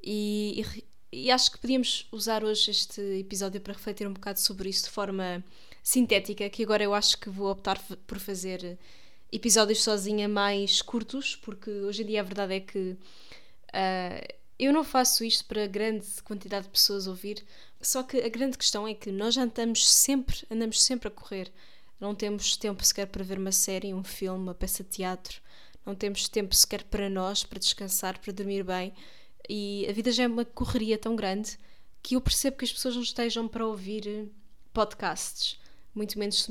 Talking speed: 185 wpm